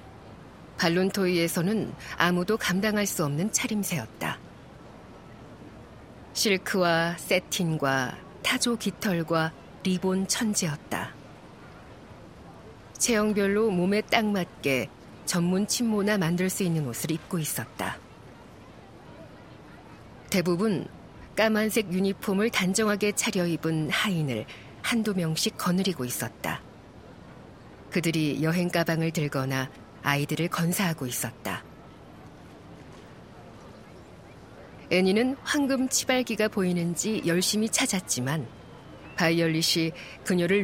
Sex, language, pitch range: female, Korean, 155-205 Hz